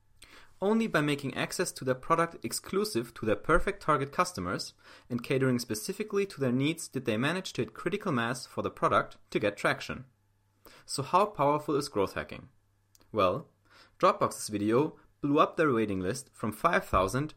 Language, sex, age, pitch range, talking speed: English, male, 30-49, 105-140 Hz, 165 wpm